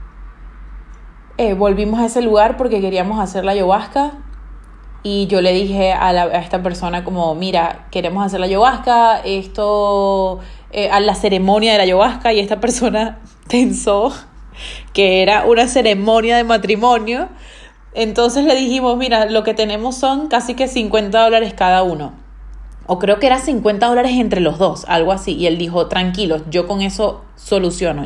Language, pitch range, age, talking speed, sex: Spanish, 190-250 Hz, 20-39, 160 wpm, female